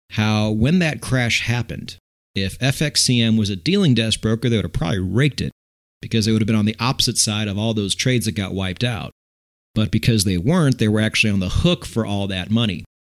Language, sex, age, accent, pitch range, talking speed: English, male, 30-49, American, 95-120 Hz, 225 wpm